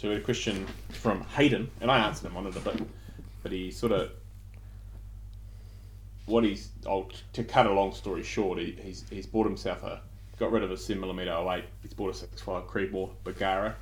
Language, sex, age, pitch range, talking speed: English, male, 20-39, 95-105 Hz, 200 wpm